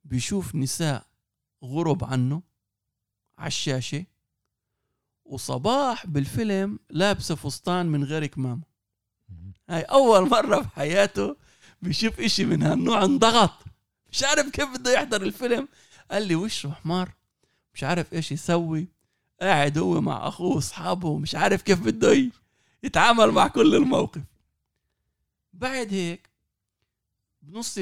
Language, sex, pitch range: Arabic, male, 130-190 Hz